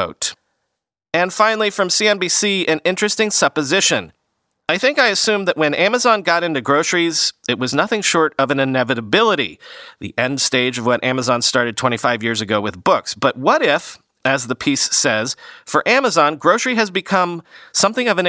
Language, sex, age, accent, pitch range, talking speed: English, male, 40-59, American, 135-190 Hz, 165 wpm